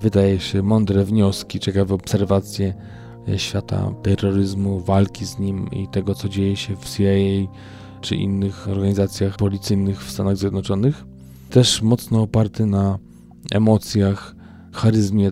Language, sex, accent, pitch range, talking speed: Polish, male, native, 95-105 Hz, 120 wpm